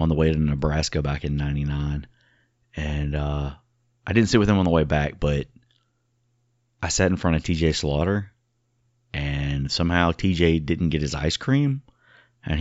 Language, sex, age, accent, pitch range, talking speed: English, male, 30-49, American, 75-100 Hz, 170 wpm